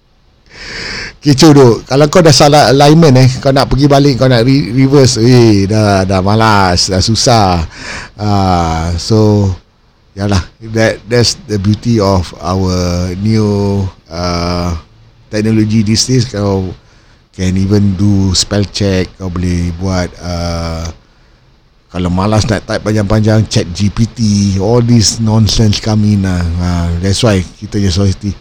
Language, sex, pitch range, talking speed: Malay, male, 95-135 Hz, 135 wpm